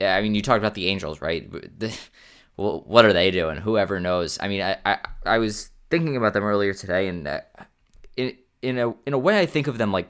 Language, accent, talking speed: English, American, 225 wpm